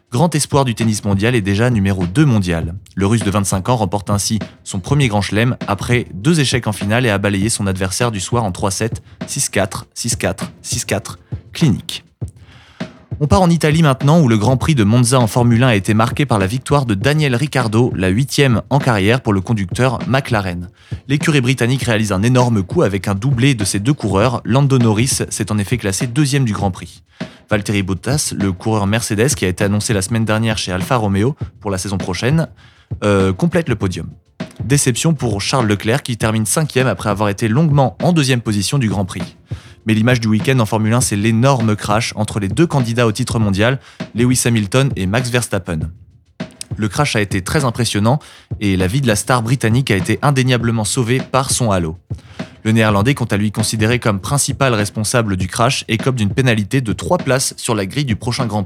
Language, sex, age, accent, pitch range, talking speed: French, male, 20-39, French, 105-130 Hz, 205 wpm